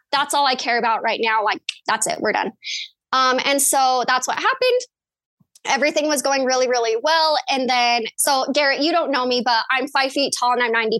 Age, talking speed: 20-39, 220 wpm